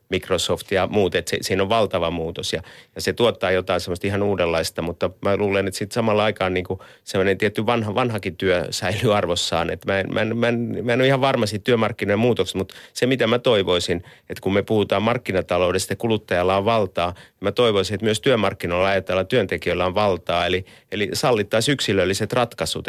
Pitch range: 95-115 Hz